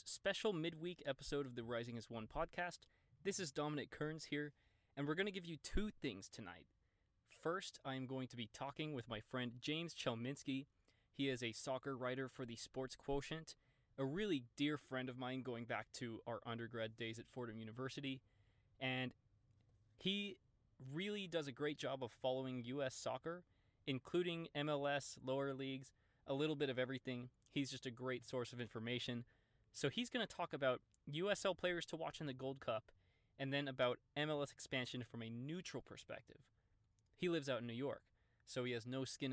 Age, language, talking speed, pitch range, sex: 20-39, English, 180 wpm, 115-150 Hz, male